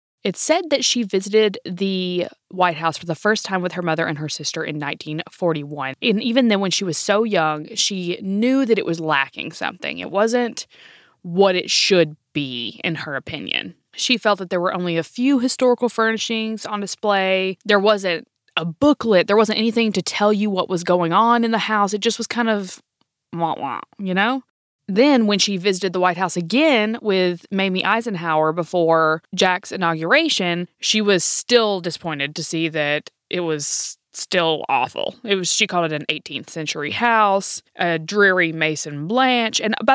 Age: 20-39